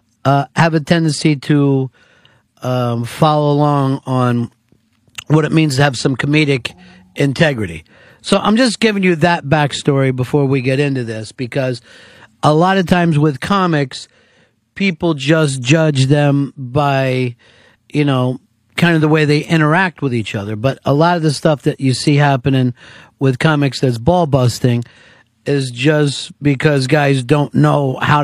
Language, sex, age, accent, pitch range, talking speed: English, male, 50-69, American, 125-155 Hz, 155 wpm